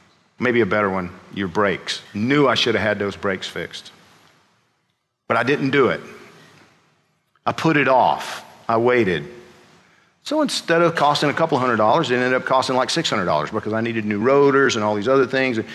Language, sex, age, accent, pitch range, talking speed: English, male, 50-69, American, 120-165 Hz, 185 wpm